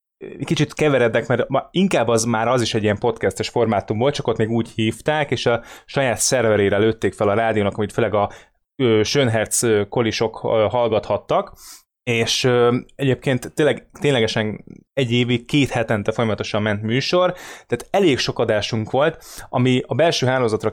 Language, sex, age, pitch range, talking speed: Hungarian, male, 20-39, 105-130 Hz, 155 wpm